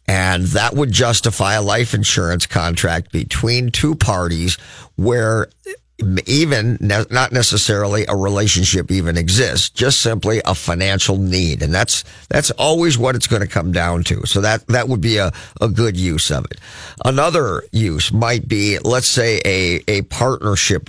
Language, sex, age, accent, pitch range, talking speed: English, male, 50-69, American, 95-130 Hz, 160 wpm